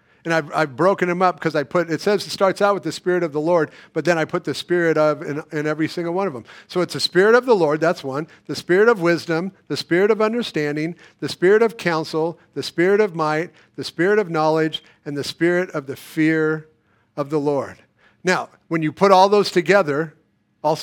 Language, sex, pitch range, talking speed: English, male, 150-185 Hz, 230 wpm